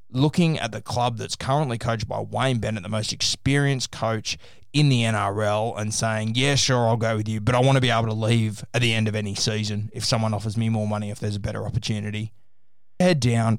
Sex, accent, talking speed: male, Australian, 230 wpm